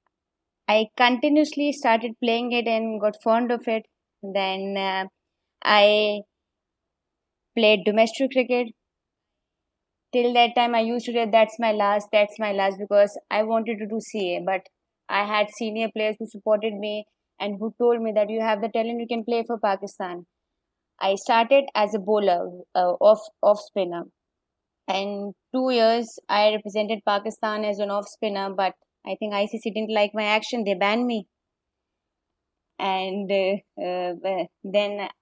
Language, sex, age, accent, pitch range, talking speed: English, female, 20-39, Indian, 200-225 Hz, 150 wpm